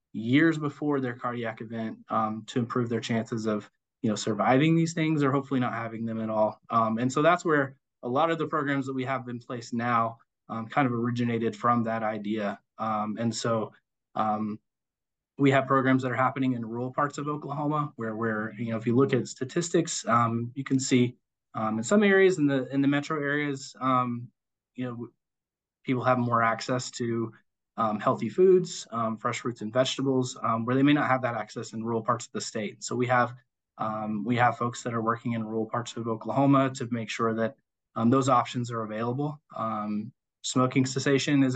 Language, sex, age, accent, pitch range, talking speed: English, male, 20-39, American, 115-135 Hz, 205 wpm